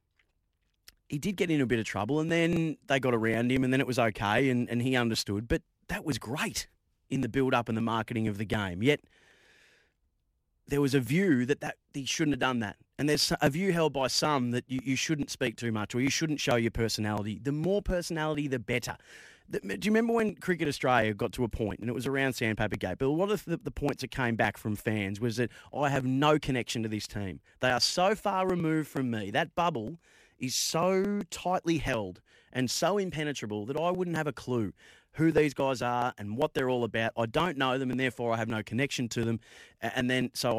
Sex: male